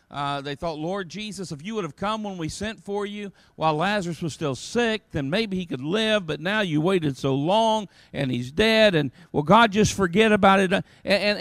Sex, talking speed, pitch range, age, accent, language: male, 225 wpm, 160-215 Hz, 50-69, American, English